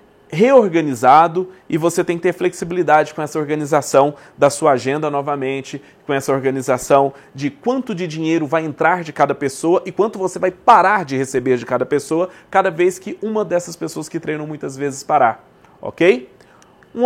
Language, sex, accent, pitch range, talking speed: Portuguese, male, Brazilian, 145-215 Hz, 170 wpm